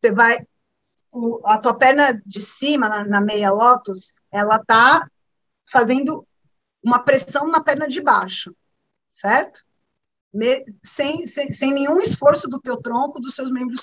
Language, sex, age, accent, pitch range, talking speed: Portuguese, female, 40-59, Brazilian, 225-305 Hz, 145 wpm